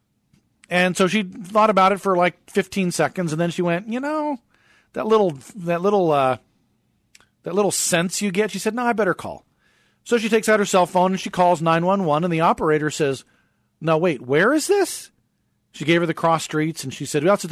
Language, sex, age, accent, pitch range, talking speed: English, male, 40-59, American, 155-200 Hz, 220 wpm